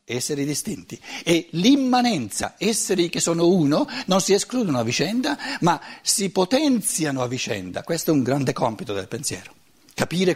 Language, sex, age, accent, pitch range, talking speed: Italian, male, 60-79, native, 125-195 Hz, 150 wpm